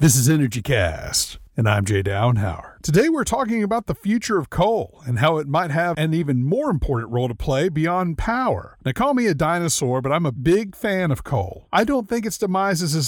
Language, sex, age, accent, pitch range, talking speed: English, male, 40-59, American, 135-195 Hz, 225 wpm